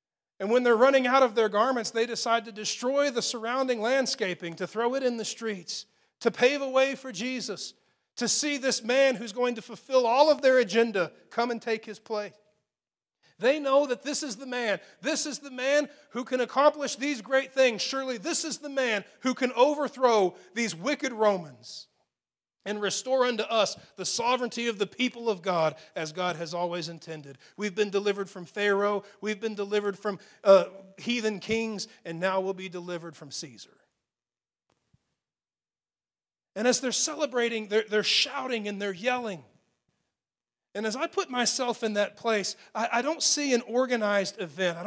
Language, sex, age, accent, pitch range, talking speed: English, male, 40-59, American, 200-255 Hz, 180 wpm